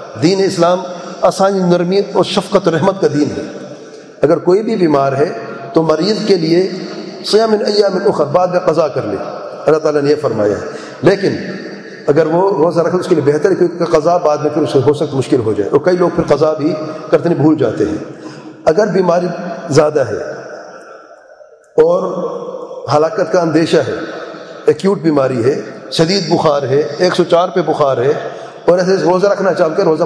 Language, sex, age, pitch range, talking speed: English, male, 40-59, 155-185 Hz, 120 wpm